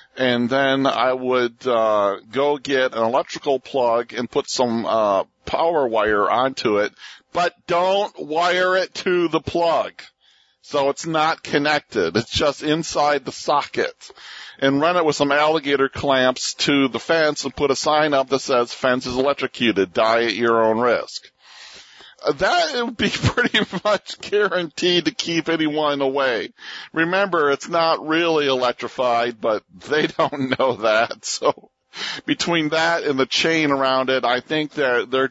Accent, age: American, 50-69